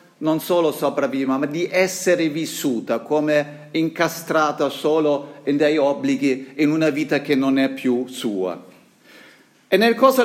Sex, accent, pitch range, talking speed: male, native, 140-200 Hz, 140 wpm